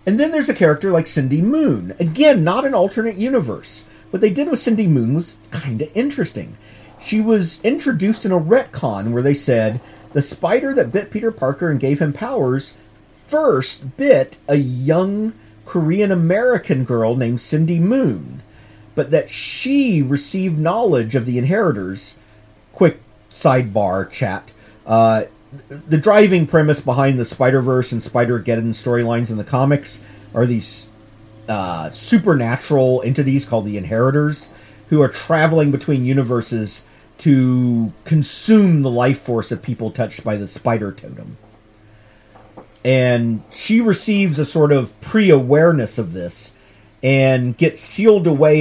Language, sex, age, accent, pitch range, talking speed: English, male, 40-59, American, 110-165 Hz, 140 wpm